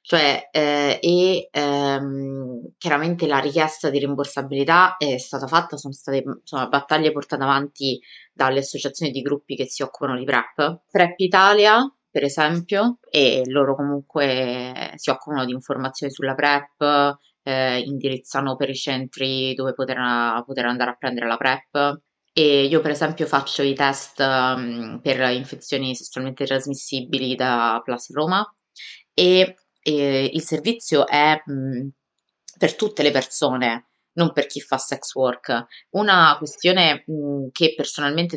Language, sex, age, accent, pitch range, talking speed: Italian, female, 20-39, native, 135-155 Hz, 140 wpm